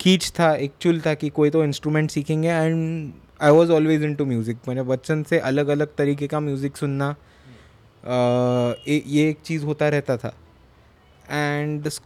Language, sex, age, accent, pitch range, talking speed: Hindi, male, 20-39, native, 140-160 Hz, 165 wpm